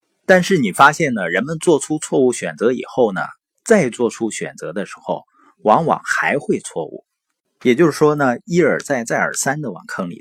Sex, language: male, Chinese